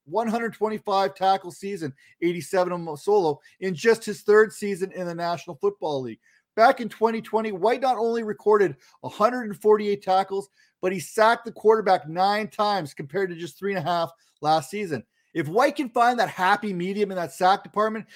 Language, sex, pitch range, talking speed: English, male, 185-225 Hz, 170 wpm